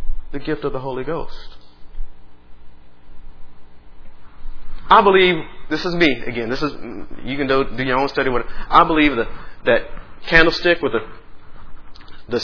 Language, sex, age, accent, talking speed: English, male, 40-59, American, 145 wpm